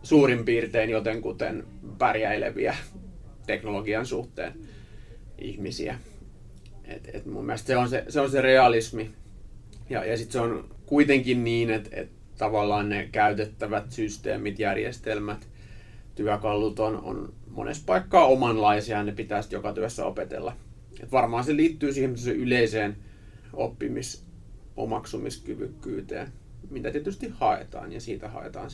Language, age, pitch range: Finnish, 30-49, 105-120 Hz